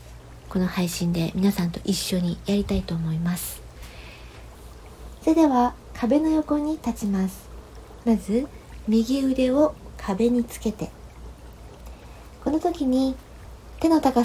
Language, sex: Japanese, female